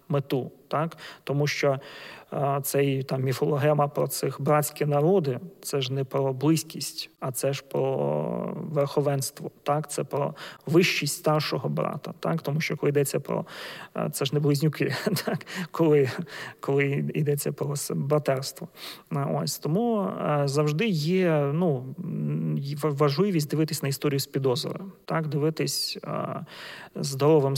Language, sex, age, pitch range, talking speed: Ukrainian, male, 30-49, 140-160 Hz, 125 wpm